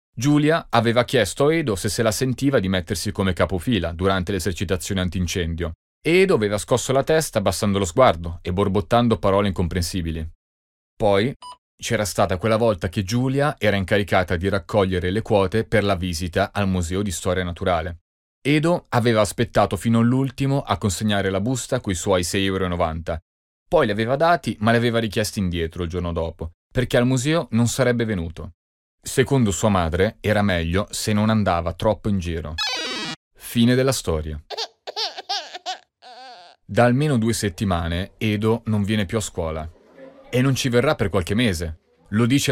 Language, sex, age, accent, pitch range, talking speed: Italian, male, 30-49, native, 90-120 Hz, 160 wpm